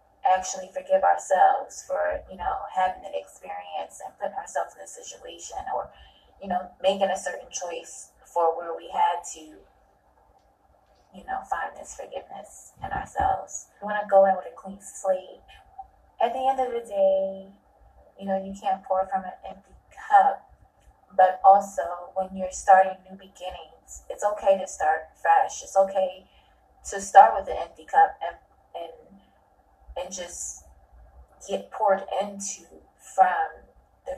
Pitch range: 185-255 Hz